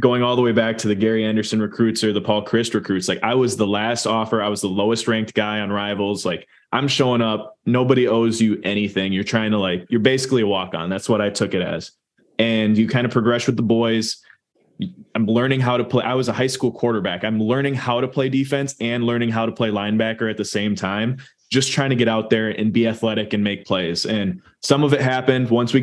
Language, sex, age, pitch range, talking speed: English, male, 20-39, 110-120 Hz, 245 wpm